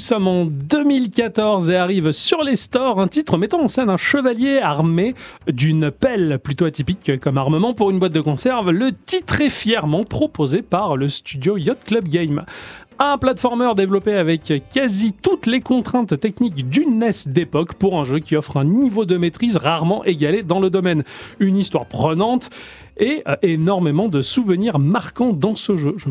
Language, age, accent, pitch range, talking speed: French, 30-49, French, 160-230 Hz, 175 wpm